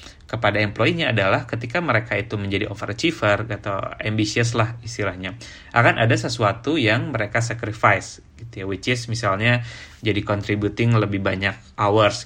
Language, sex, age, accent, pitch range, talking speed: Indonesian, male, 20-39, native, 100-115 Hz, 135 wpm